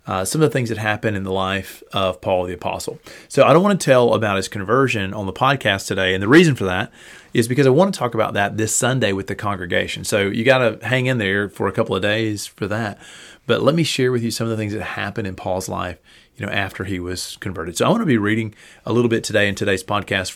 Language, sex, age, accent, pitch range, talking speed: English, male, 30-49, American, 105-130 Hz, 275 wpm